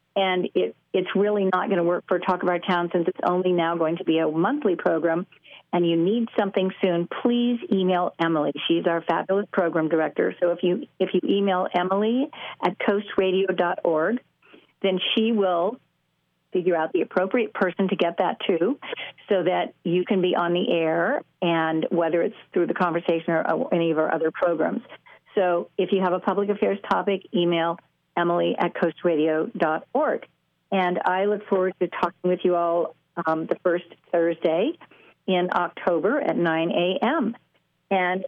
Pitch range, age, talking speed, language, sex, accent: 170-200 Hz, 50-69, 170 wpm, English, female, American